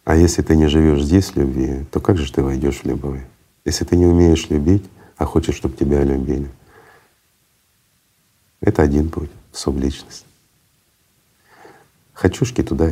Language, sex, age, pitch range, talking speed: Russian, male, 50-69, 70-95 Hz, 145 wpm